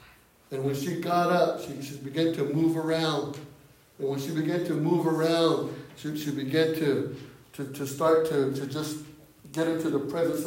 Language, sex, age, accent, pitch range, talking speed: English, male, 60-79, American, 140-170 Hz, 185 wpm